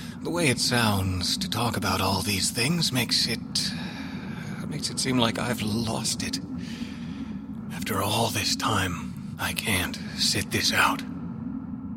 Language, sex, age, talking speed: English, male, 40-59, 140 wpm